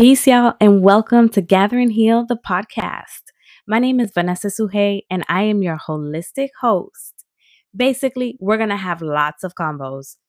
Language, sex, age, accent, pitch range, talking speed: English, female, 20-39, American, 175-225 Hz, 165 wpm